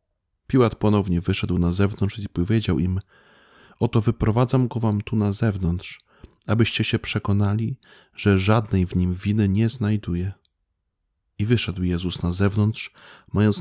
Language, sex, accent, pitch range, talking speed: Polish, male, native, 95-115 Hz, 135 wpm